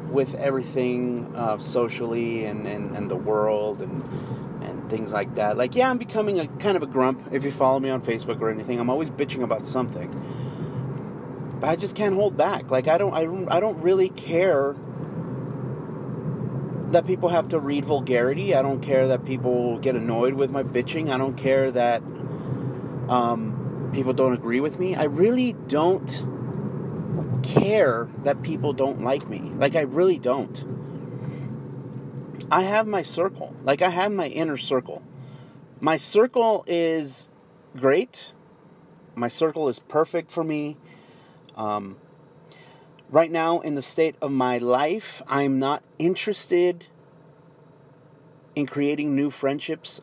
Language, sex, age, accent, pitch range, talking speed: English, male, 30-49, American, 130-160 Hz, 150 wpm